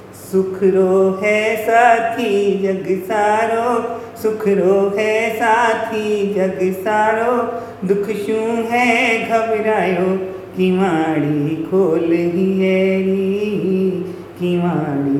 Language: Hindi